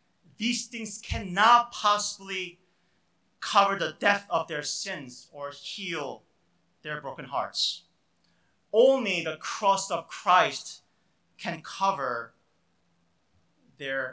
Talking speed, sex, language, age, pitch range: 100 wpm, male, English, 30-49, 125-185 Hz